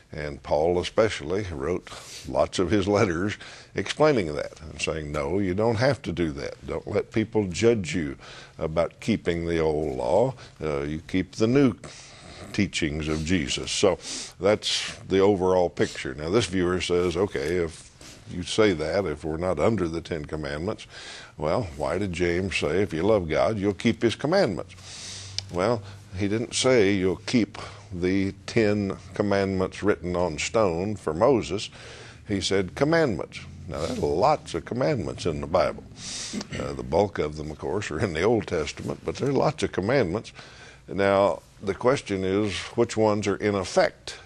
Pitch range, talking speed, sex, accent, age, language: 90-110 Hz, 170 wpm, male, American, 60-79, English